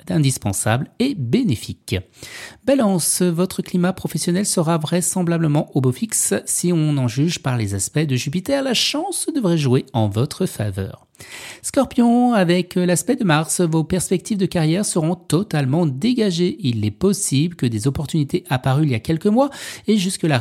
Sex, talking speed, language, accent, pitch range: male, 160 wpm, French, French, 140-210 Hz